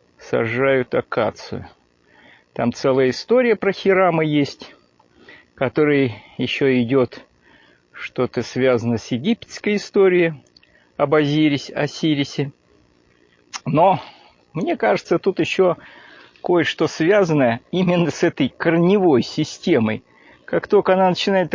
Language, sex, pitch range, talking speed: Russian, male, 125-185 Hz, 100 wpm